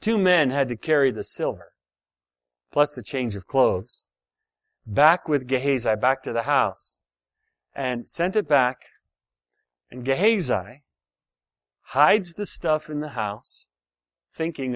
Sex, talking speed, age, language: male, 130 wpm, 40-59, English